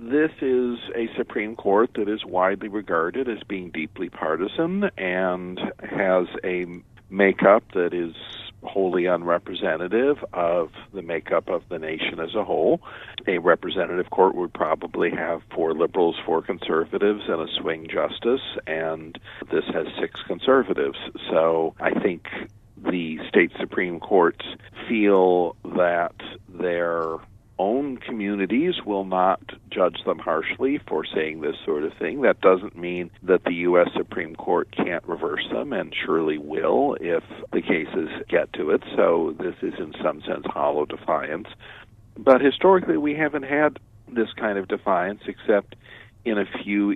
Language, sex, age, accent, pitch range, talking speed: English, male, 50-69, American, 90-115 Hz, 145 wpm